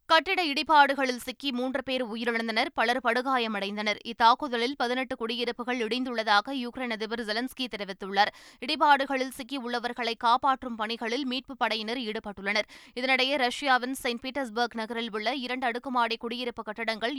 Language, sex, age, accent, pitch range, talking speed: Tamil, female, 20-39, native, 225-260 Hz, 110 wpm